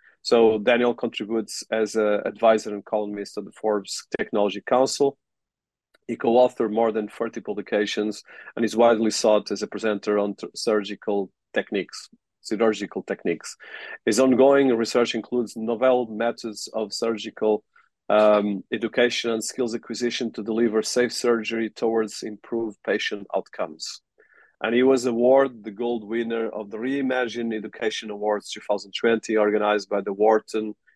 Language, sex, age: English, male, 40-59